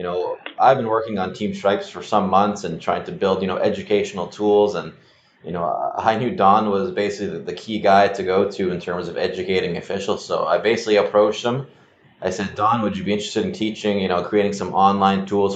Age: 20-39